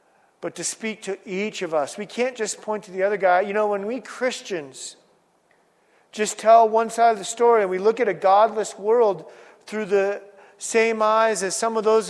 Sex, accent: male, American